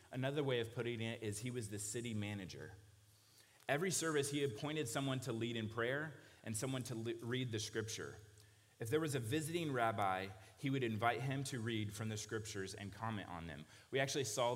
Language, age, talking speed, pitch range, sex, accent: English, 30-49, 200 wpm, 105-125 Hz, male, American